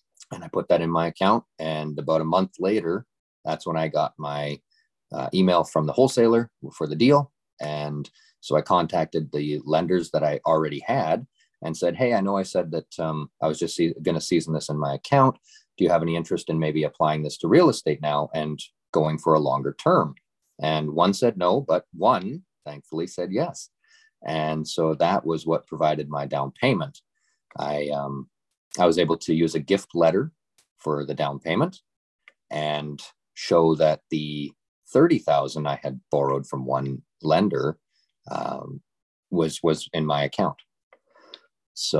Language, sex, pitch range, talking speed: English, male, 75-85 Hz, 175 wpm